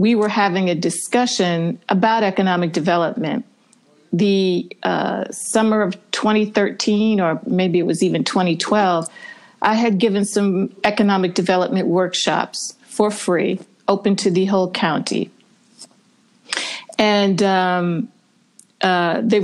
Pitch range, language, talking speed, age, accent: 185-225 Hz, English, 115 wpm, 50-69, American